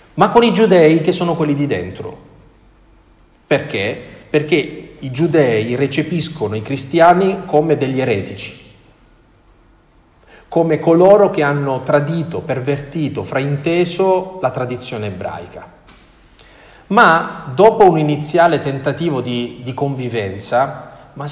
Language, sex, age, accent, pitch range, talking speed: Italian, male, 40-59, native, 125-165 Hz, 105 wpm